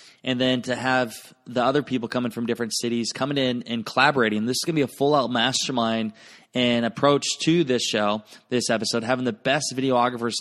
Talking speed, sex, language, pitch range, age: 200 wpm, male, English, 115-140 Hz, 20-39